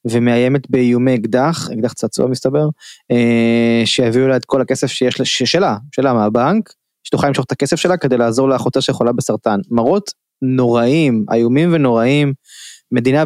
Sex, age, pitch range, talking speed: male, 20-39, 120-140 Hz, 145 wpm